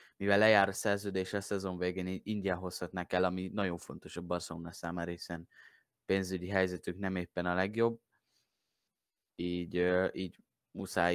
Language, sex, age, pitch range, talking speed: Hungarian, male, 20-39, 90-100 Hz, 135 wpm